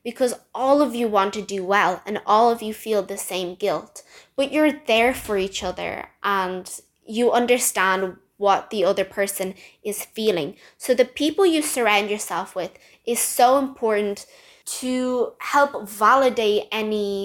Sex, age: female, 10-29